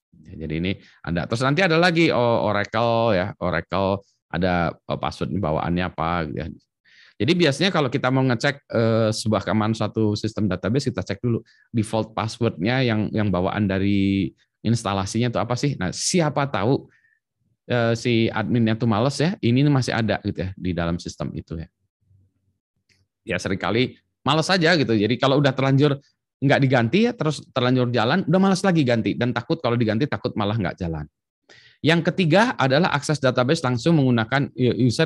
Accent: native